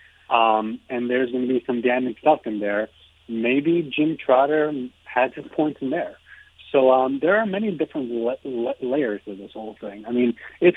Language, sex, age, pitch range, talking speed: English, male, 40-59, 115-135 Hz, 195 wpm